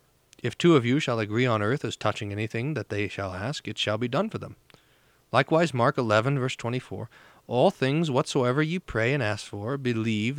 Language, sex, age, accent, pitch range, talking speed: English, male, 40-59, American, 105-135 Hz, 200 wpm